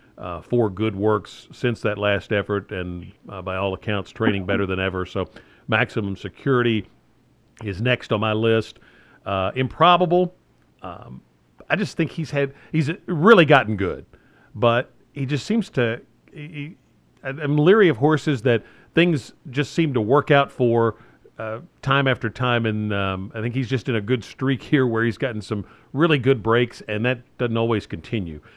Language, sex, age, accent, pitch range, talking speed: English, male, 50-69, American, 100-130 Hz, 170 wpm